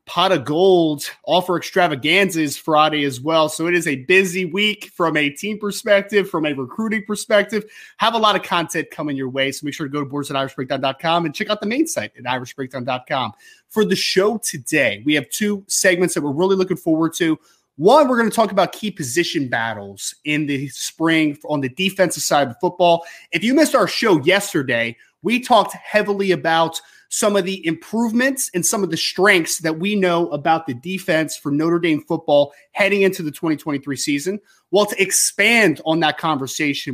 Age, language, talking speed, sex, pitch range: 30-49, English, 195 wpm, male, 155-210 Hz